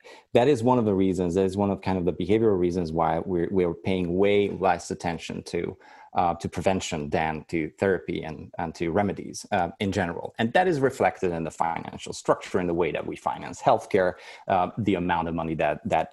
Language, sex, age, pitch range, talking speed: English, male, 30-49, 85-105 Hz, 220 wpm